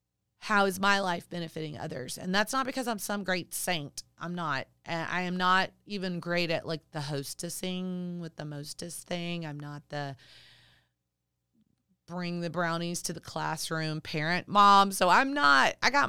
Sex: female